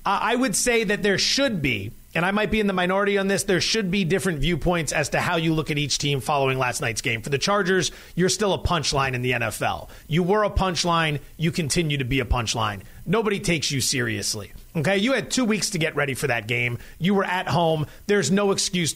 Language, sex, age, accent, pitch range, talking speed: English, male, 30-49, American, 145-205 Hz, 235 wpm